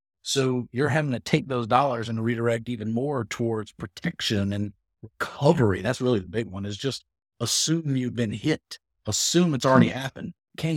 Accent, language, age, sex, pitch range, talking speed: American, English, 50-69, male, 100-125 Hz, 175 wpm